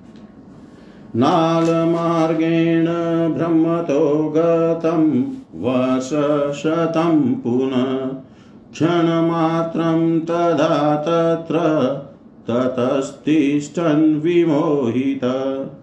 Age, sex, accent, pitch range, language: 50-69, male, native, 135-165 Hz, Hindi